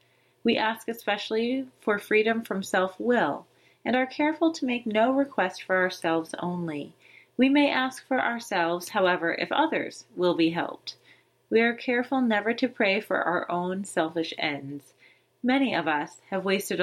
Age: 30-49